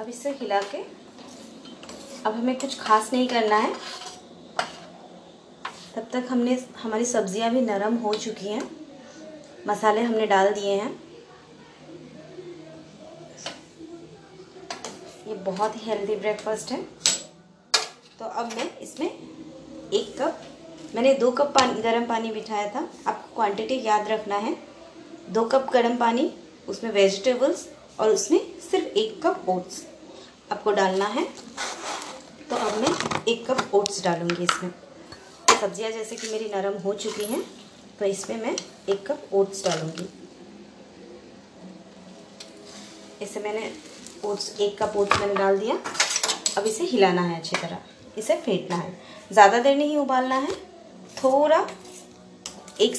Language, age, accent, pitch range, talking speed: Hindi, 20-39, native, 205-270 Hz, 130 wpm